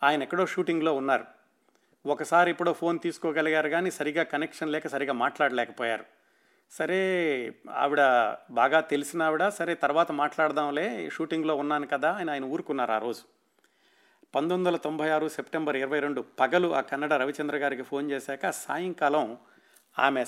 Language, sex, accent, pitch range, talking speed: Telugu, male, native, 130-165 Hz, 135 wpm